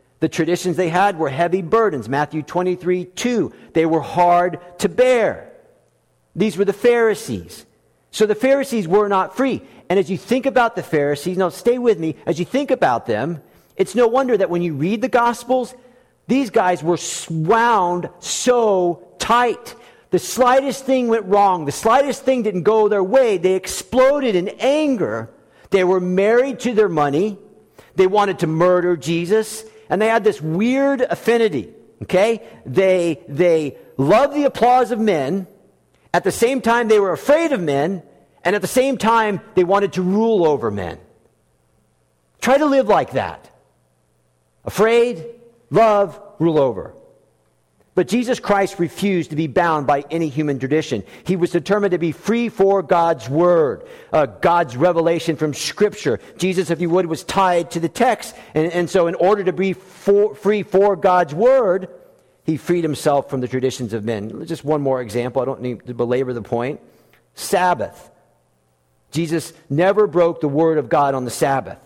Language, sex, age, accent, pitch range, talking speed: English, male, 50-69, American, 165-225 Hz, 170 wpm